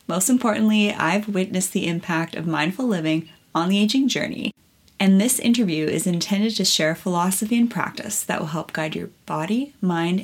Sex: female